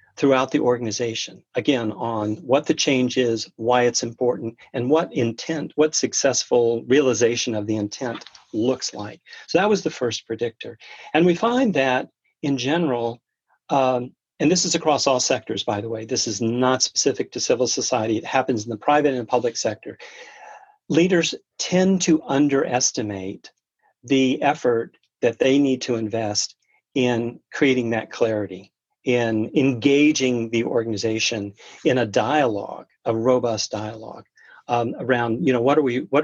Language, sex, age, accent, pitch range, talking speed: English, male, 40-59, American, 115-150 Hz, 155 wpm